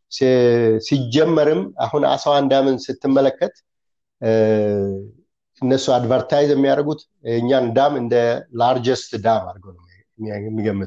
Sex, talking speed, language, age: male, 75 wpm, Amharic, 50-69